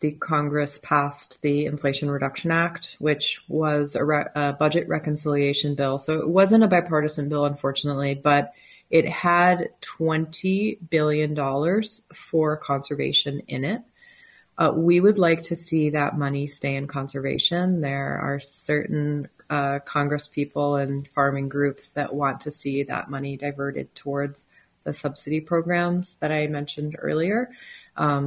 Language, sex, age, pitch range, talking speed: English, female, 30-49, 145-170 Hz, 140 wpm